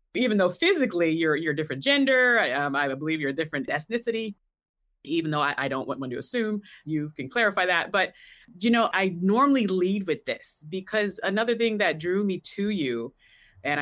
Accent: American